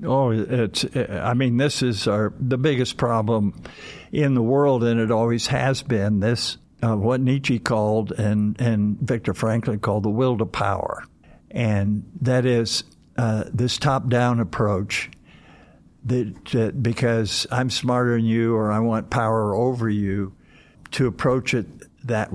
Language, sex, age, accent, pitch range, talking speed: English, male, 60-79, American, 110-130 Hz, 150 wpm